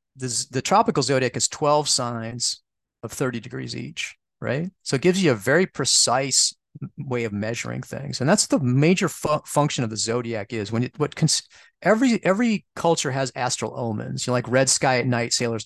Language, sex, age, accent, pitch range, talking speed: English, male, 40-59, American, 115-150 Hz, 195 wpm